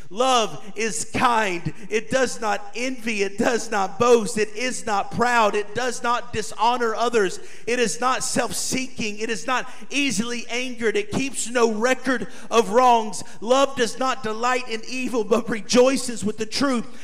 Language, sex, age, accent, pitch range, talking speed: English, male, 40-59, American, 220-260 Hz, 160 wpm